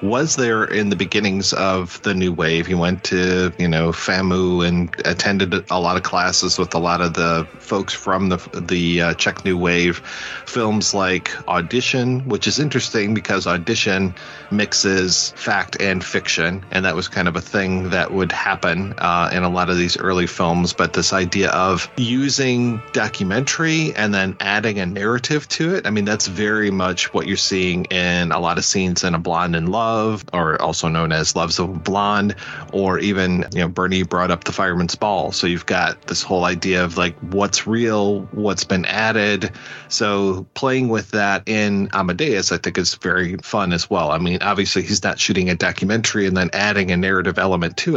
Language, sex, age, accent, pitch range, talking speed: English, male, 30-49, American, 90-110 Hz, 190 wpm